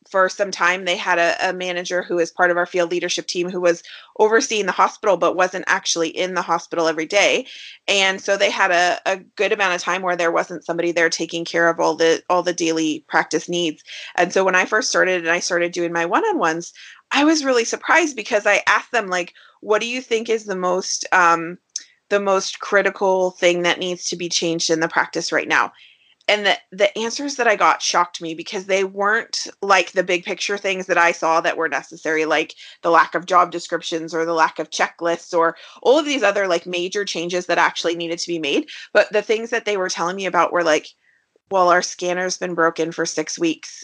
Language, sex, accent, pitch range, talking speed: English, female, American, 170-210 Hz, 225 wpm